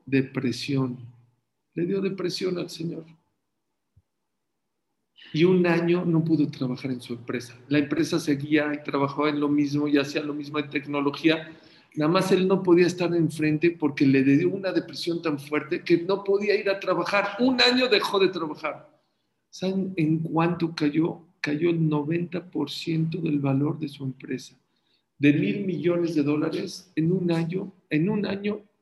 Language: English